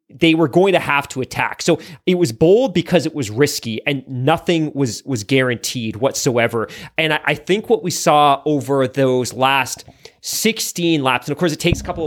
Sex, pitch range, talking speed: male, 125-155 Hz, 200 wpm